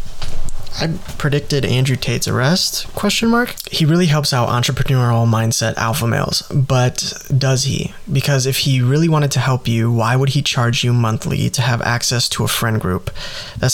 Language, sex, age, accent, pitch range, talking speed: English, male, 20-39, American, 115-140 Hz, 175 wpm